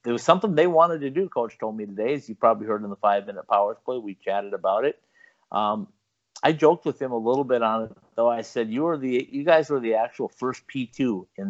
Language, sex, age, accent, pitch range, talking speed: English, male, 50-69, American, 115-155 Hz, 250 wpm